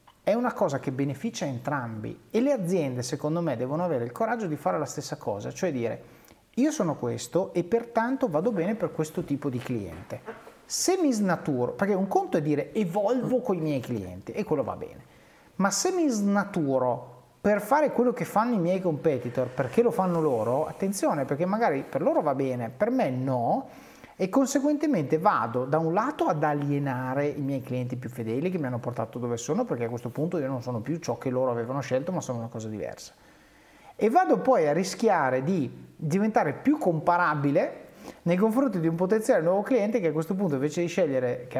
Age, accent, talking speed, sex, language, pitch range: 30-49, native, 200 wpm, male, Italian, 130-200 Hz